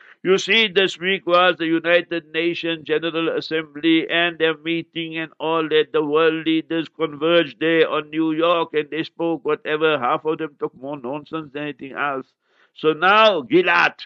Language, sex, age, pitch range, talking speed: English, male, 60-79, 150-180 Hz, 170 wpm